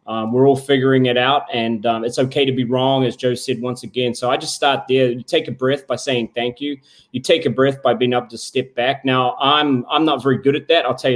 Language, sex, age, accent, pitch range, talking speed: English, male, 20-39, Australian, 125-145 Hz, 275 wpm